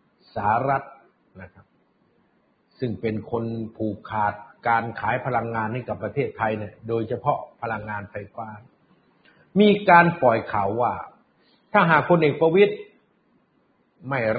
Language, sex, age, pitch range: Thai, male, 60-79, 115-165 Hz